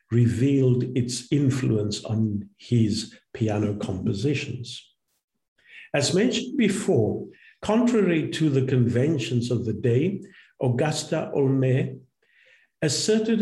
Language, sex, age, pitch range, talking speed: English, male, 50-69, 115-150 Hz, 90 wpm